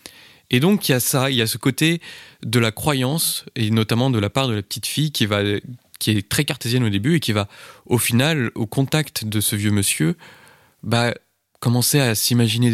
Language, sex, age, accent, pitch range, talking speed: French, male, 20-39, French, 105-130 Hz, 215 wpm